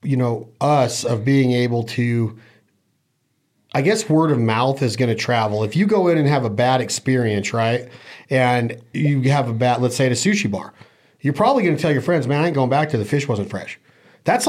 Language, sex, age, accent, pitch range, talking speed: English, male, 40-59, American, 125-170 Hz, 230 wpm